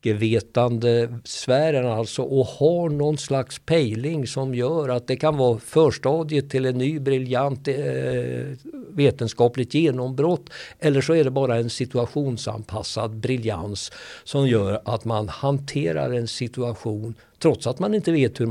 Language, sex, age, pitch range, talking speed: Swedish, male, 60-79, 115-135 Hz, 135 wpm